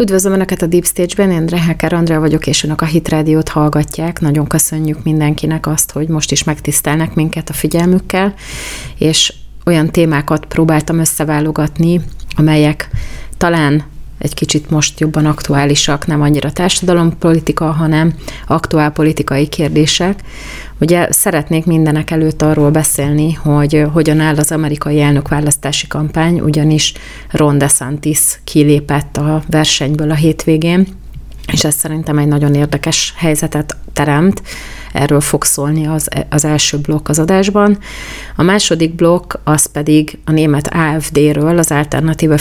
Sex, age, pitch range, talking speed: female, 30-49, 150-165 Hz, 130 wpm